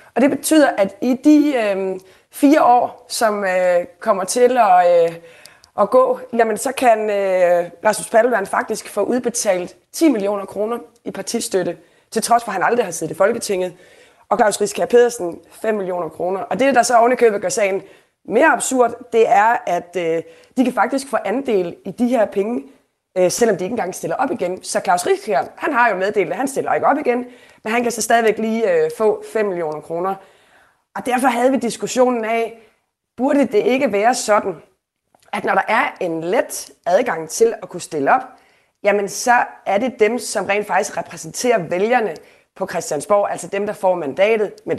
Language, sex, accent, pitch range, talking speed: Danish, female, native, 180-240 Hz, 190 wpm